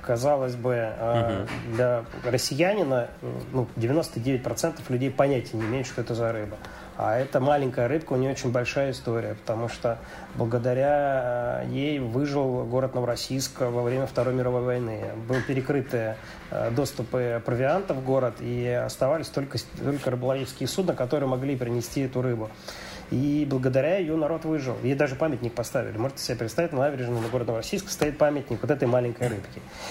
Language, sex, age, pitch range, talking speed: Russian, male, 30-49, 120-140 Hz, 150 wpm